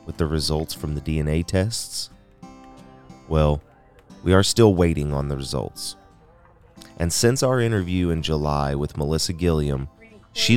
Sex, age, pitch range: male, 30-49, 80-95 Hz